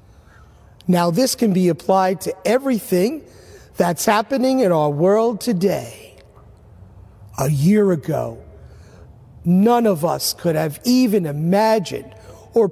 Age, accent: 50-69, American